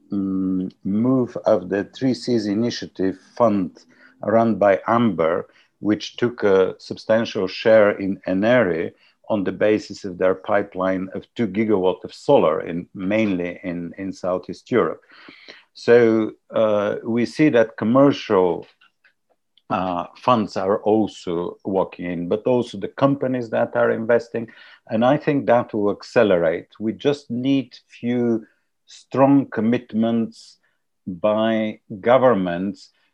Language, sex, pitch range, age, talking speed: English, male, 95-115 Hz, 50-69, 120 wpm